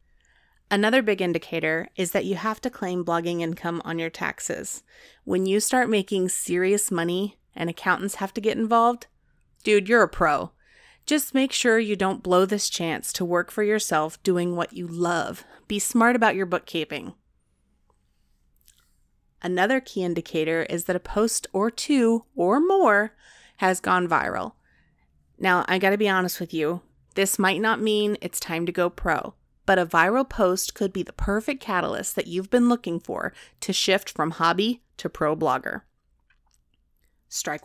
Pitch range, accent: 170-215 Hz, American